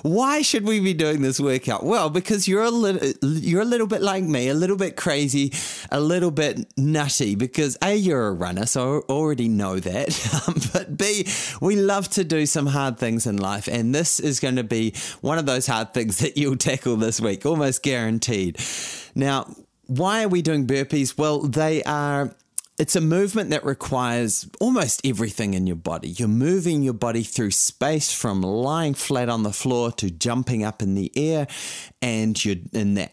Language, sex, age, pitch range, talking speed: English, male, 30-49, 110-155 Hz, 185 wpm